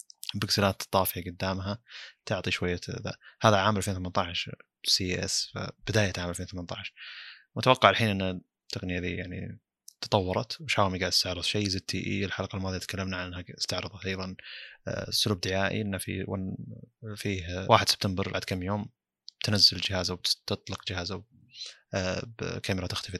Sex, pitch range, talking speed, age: male, 95-105 Hz, 125 wpm, 20-39